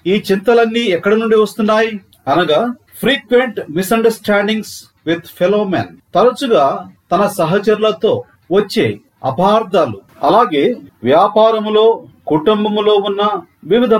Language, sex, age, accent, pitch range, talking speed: Telugu, male, 40-59, native, 180-230 Hz, 90 wpm